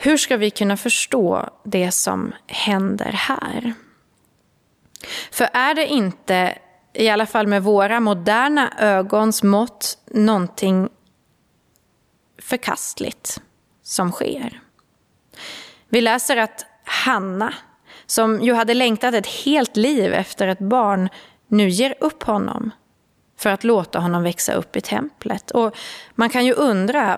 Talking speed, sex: 125 wpm, female